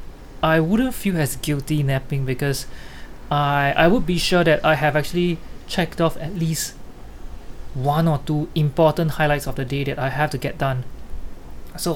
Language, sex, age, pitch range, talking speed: English, male, 20-39, 135-160 Hz, 175 wpm